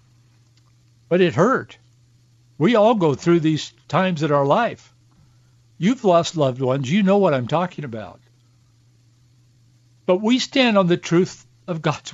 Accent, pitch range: American, 120-190 Hz